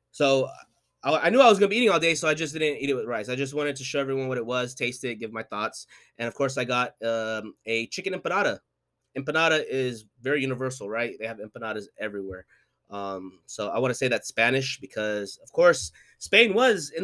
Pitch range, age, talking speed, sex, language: 115-150 Hz, 20-39, 230 wpm, male, English